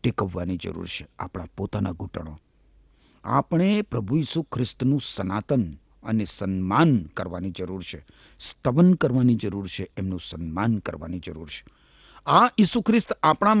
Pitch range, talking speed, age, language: 110-180 Hz, 130 wpm, 50-69, Gujarati